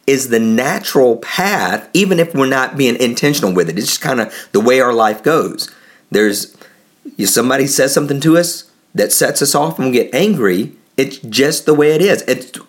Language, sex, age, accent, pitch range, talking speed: English, male, 40-59, American, 110-160 Hz, 205 wpm